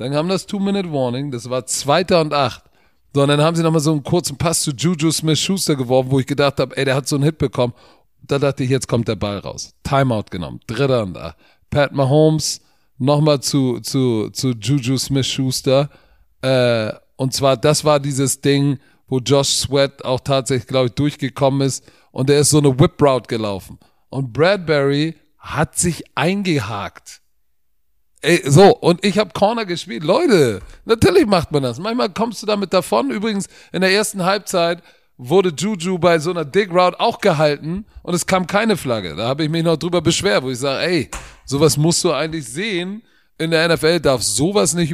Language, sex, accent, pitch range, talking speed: German, male, German, 130-180 Hz, 190 wpm